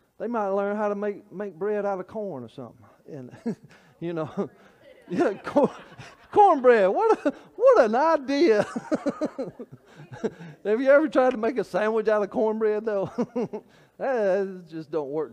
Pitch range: 175-260 Hz